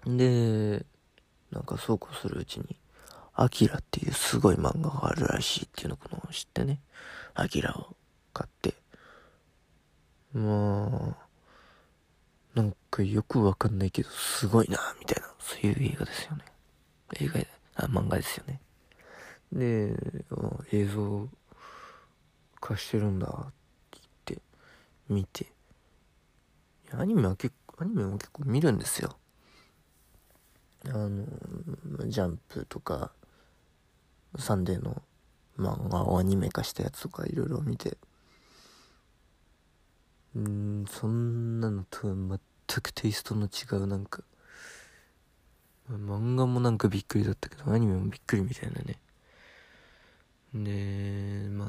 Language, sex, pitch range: Japanese, male, 95-115 Hz